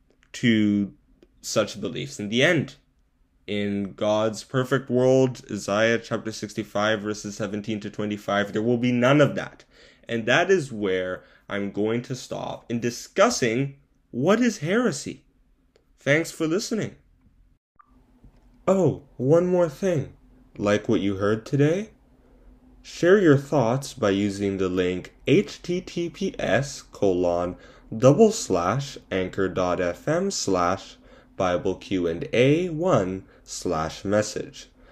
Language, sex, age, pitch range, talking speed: English, male, 10-29, 100-140 Hz, 115 wpm